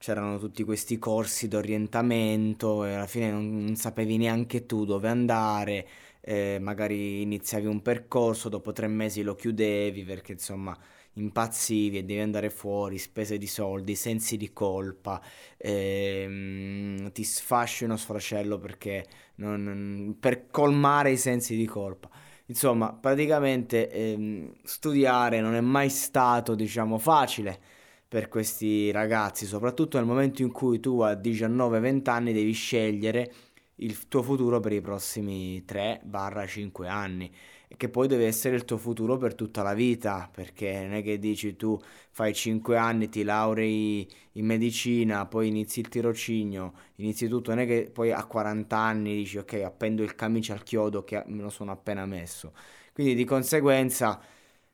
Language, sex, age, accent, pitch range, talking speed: Italian, male, 20-39, native, 105-115 Hz, 150 wpm